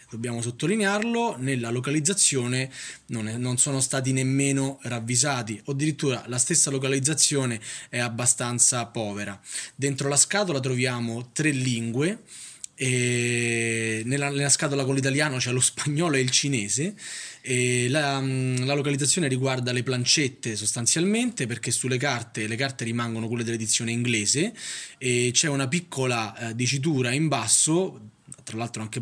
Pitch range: 115-135 Hz